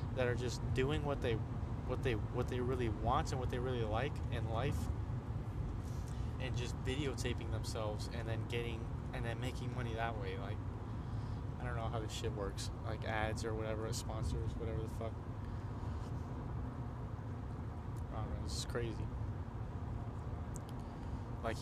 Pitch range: 115-120 Hz